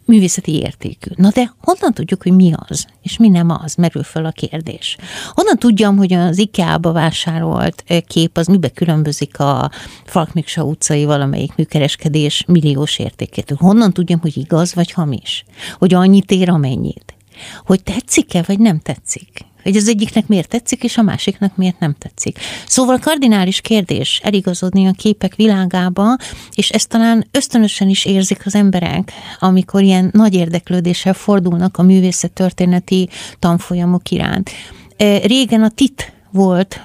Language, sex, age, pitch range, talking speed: Hungarian, female, 60-79, 170-210 Hz, 145 wpm